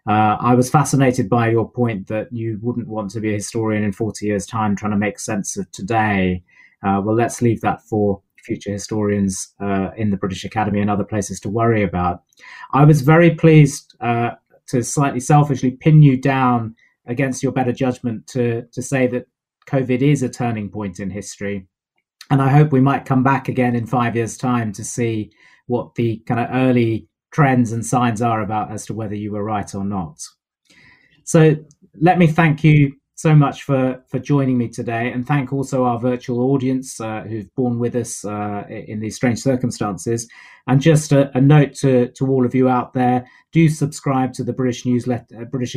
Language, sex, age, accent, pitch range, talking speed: English, male, 30-49, British, 105-130 Hz, 195 wpm